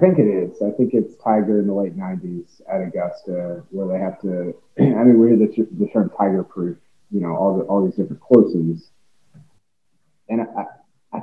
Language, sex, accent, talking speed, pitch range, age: English, male, American, 190 wpm, 100-135 Hz, 30-49